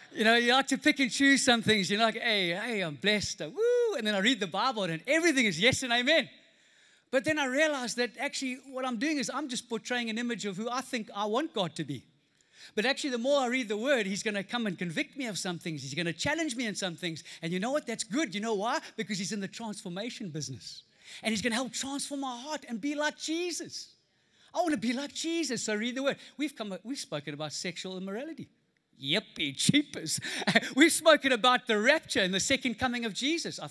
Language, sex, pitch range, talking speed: English, male, 170-260 Hz, 240 wpm